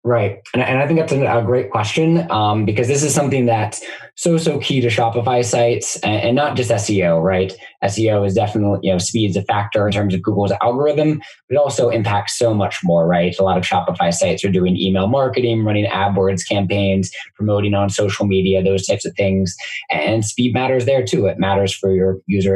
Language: English